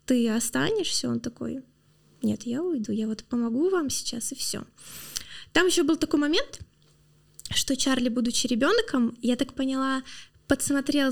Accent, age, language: native, 20-39, Russian